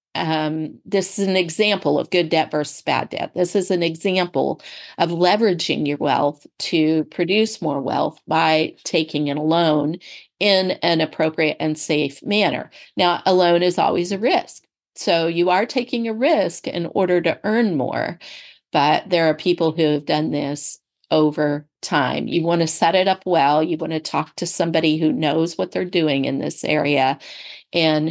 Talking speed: 175 wpm